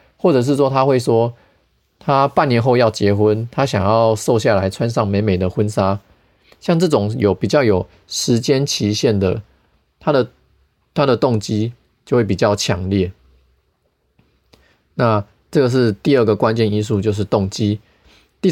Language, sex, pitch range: Chinese, male, 100-120 Hz